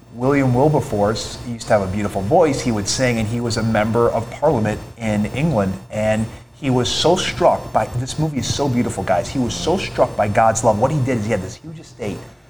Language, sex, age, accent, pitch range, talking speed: English, male, 30-49, American, 115-135 Hz, 230 wpm